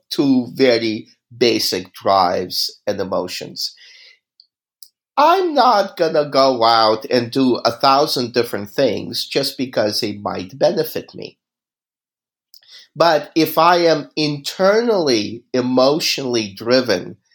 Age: 50-69